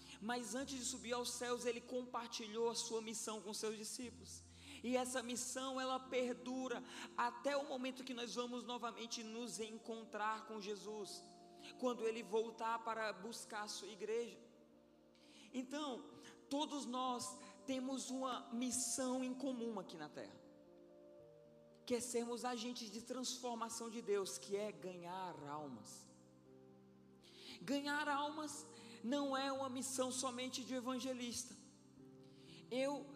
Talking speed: 125 wpm